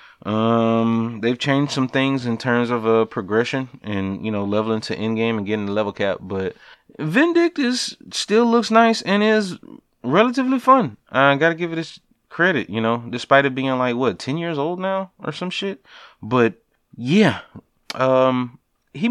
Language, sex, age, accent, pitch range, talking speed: English, male, 20-39, American, 110-160 Hz, 180 wpm